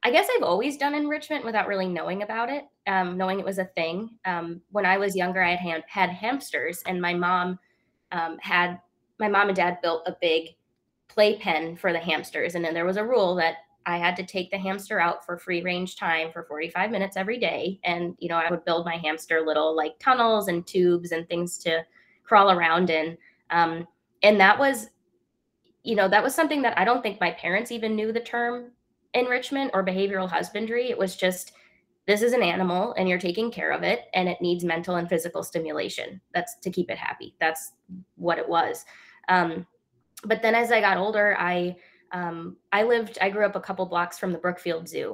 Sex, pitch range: female, 170-205 Hz